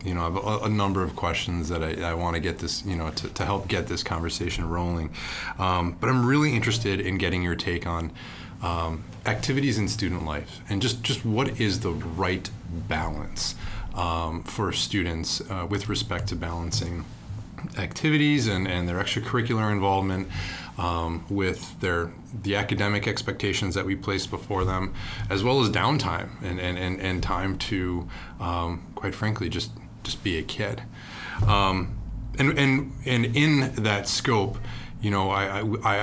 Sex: male